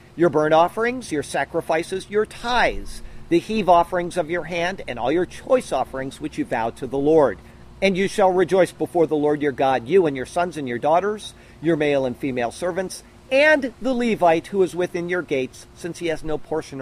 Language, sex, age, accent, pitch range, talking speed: English, male, 50-69, American, 135-185 Hz, 205 wpm